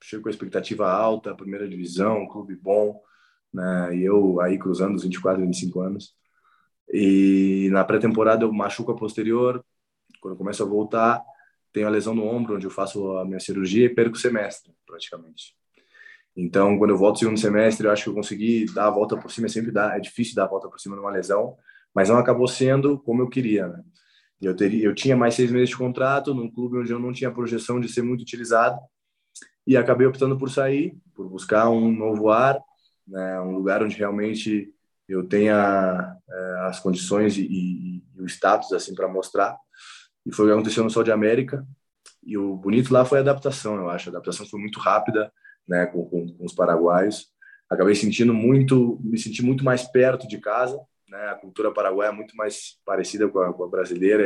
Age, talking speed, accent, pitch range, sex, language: 20-39, 200 wpm, Brazilian, 95-120 Hz, male, Portuguese